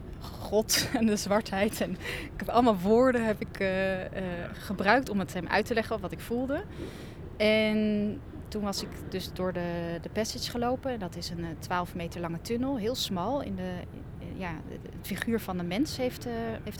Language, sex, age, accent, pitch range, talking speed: Dutch, female, 30-49, Dutch, 170-215 Hz, 195 wpm